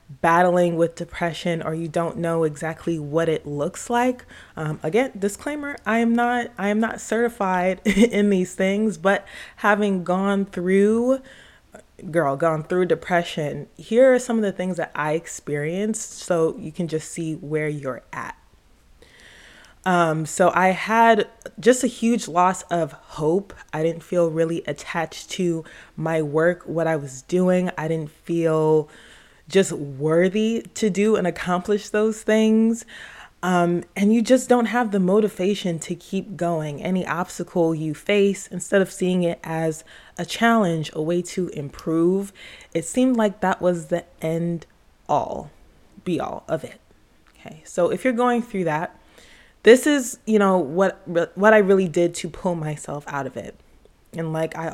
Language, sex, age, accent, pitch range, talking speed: English, female, 20-39, American, 160-205 Hz, 160 wpm